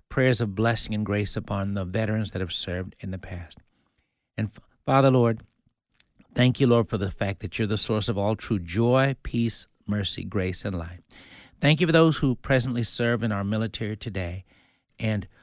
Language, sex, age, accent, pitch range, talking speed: English, male, 60-79, American, 100-125 Hz, 185 wpm